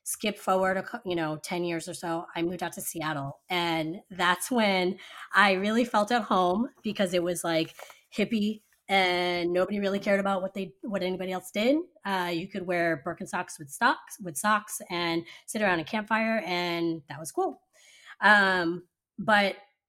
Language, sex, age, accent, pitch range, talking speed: English, female, 20-39, American, 165-200 Hz, 170 wpm